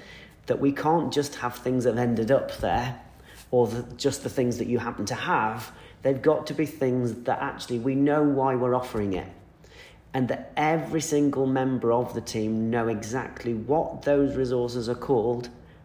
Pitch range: 115-140 Hz